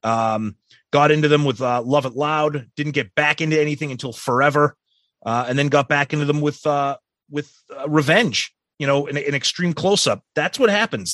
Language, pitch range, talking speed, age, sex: English, 125-155 Hz, 200 wpm, 30-49, male